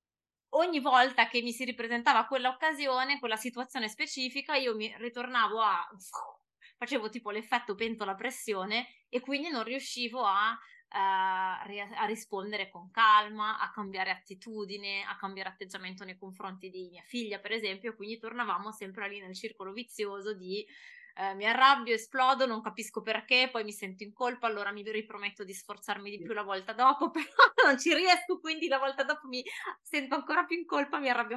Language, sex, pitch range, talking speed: Italian, female, 205-270 Hz, 165 wpm